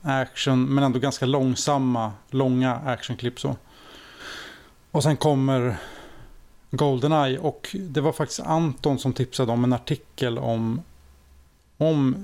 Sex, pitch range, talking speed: male, 125-145 Hz, 115 wpm